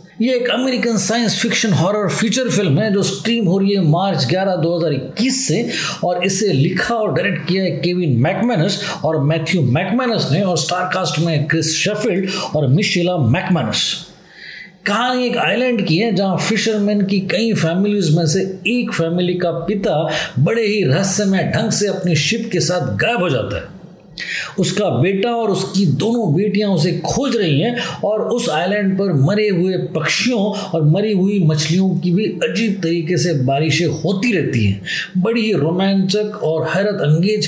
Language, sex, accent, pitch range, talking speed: Hindi, male, native, 165-210 Hz, 165 wpm